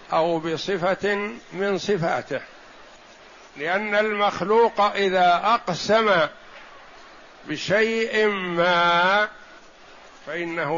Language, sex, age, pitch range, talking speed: Arabic, male, 60-79, 170-205 Hz, 60 wpm